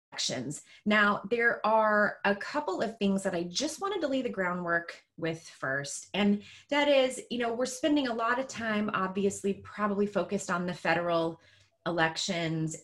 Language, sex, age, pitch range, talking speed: English, female, 20-39, 170-240 Hz, 165 wpm